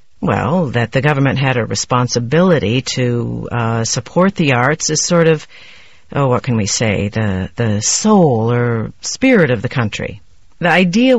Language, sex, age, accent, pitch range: Chinese, female, 50-69, American, 125-185 Hz